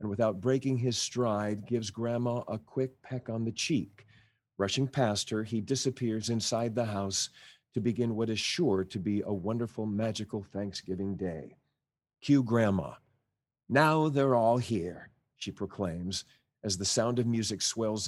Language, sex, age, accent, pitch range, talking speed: English, male, 50-69, American, 100-125 Hz, 155 wpm